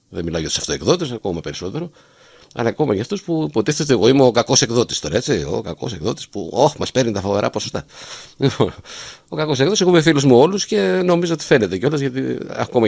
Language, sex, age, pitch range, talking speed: Greek, male, 50-69, 85-145 Hz, 220 wpm